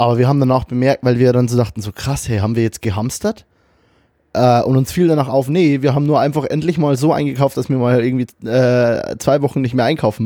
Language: German